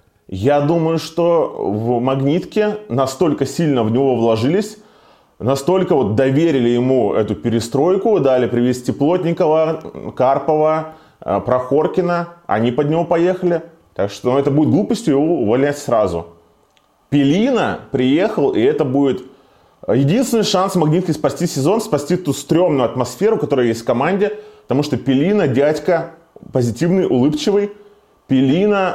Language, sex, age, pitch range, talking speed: Russian, male, 20-39, 120-175 Hz, 120 wpm